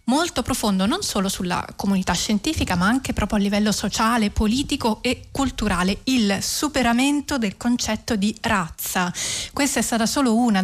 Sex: female